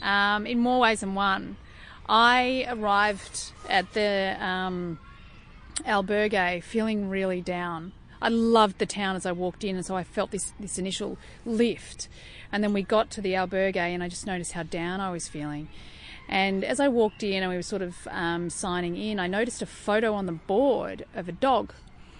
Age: 30-49